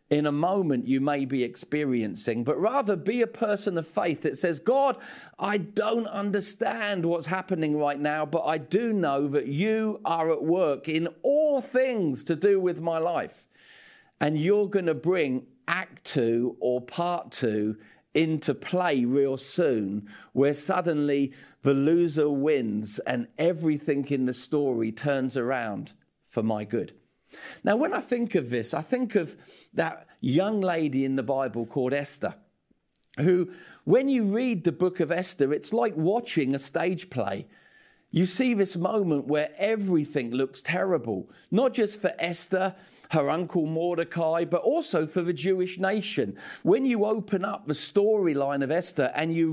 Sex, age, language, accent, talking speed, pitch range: male, 40-59, English, British, 160 wpm, 140-200 Hz